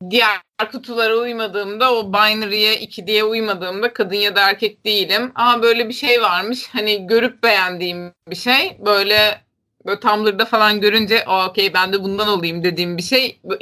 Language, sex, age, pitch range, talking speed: Turkish, female, 30-49, 195-245 Hz, 165 wpm